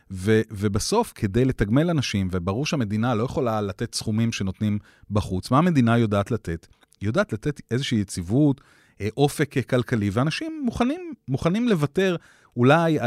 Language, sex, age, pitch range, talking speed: Hebrew, male, 30-49, 105-140 Hz, 135 wpm